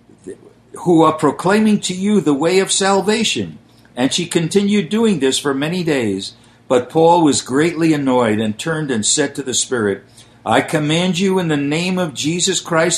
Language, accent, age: English, American, 60-79